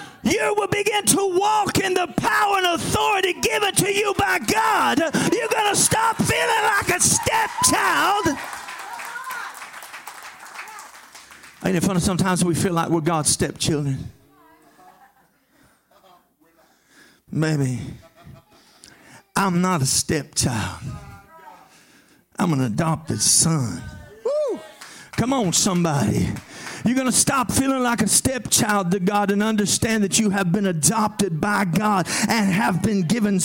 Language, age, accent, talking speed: English, 40-59, American, 120 wpm